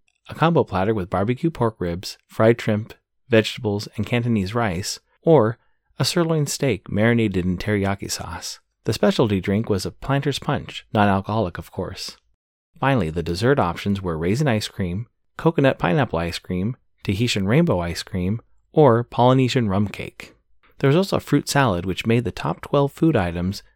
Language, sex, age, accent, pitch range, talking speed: English, male, 30-49, American, 95-135 Hz, 160 wpm